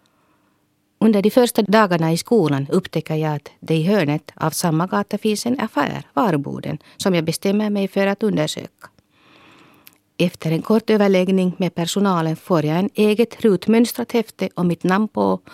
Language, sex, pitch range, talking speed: Swedish, female, 160-210 Hz, 160 wpm